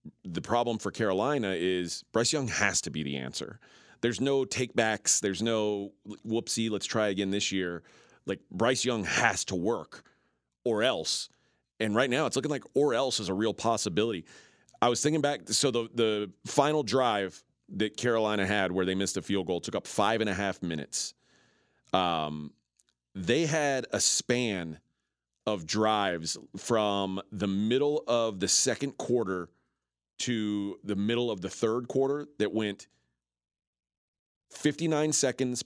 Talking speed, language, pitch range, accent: 155 wpm, English, 85-130 Hz, American